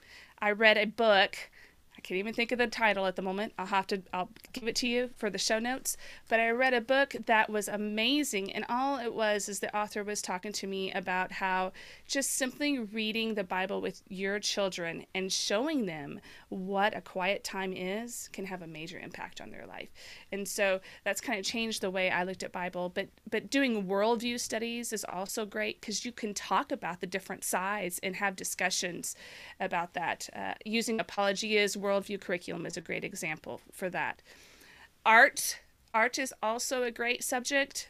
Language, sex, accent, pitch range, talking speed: English, female, American, 195-240 Hz, 190 wpm